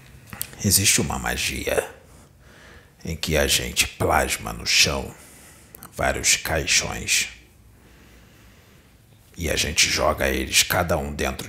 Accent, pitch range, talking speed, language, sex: Brazilian, 80-105 Hz, 105 wpm, Portuguese, male